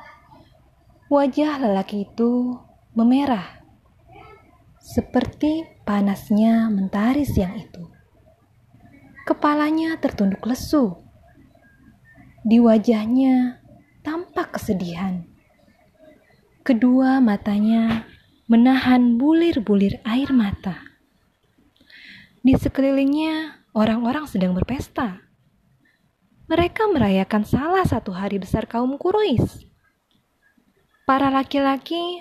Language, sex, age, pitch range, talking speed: Indonesian, female, 20-39, 215-300 Hz, 70 wpm